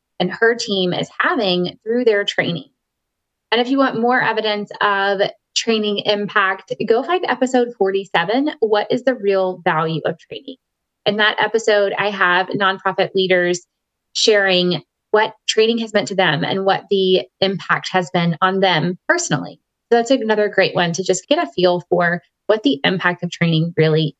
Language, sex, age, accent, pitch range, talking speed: English, female, 20-39, American, 185-245 Hz, 170 wpm